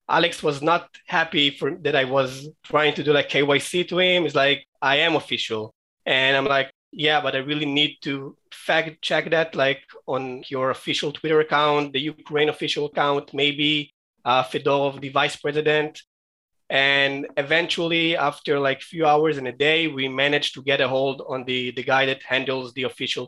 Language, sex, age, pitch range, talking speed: English, male, 20-39, 135-160 Hz, 185 wpm